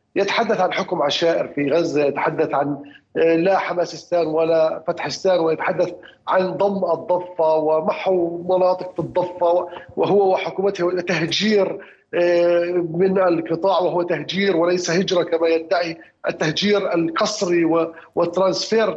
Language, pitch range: Arabic, 170-215 Hz